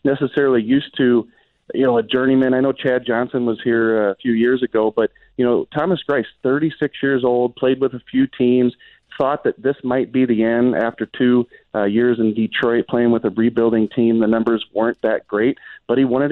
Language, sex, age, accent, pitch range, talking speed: English, male, 40-59, American, 115-130 Hz, 205 wpm